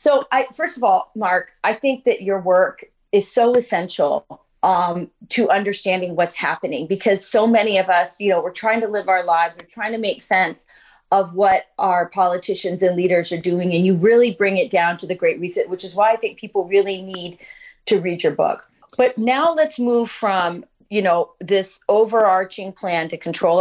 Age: 30-49